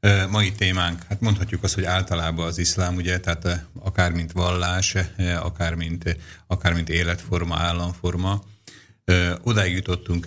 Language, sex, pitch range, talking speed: Slovak, male, 85-95 Hz, 125 wpm